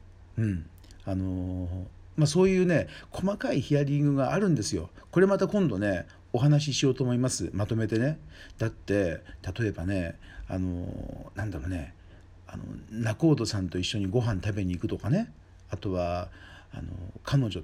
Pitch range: 90-145 Hz